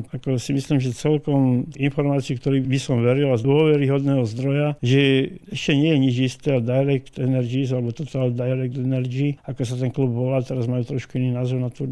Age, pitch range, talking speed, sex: 50-69, 125-140 Hz, 190 wpm, male